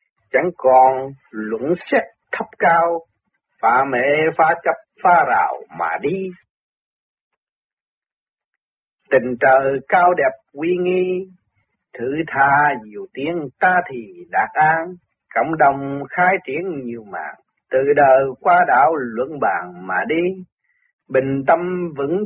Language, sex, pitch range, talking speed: Vietnamese, male, 135-185 Hz, 120 wpm